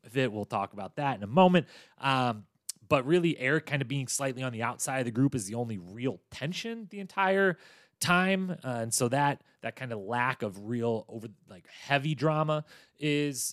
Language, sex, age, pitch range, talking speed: English, male, 30-49, 115-150 Hz, 200 wpm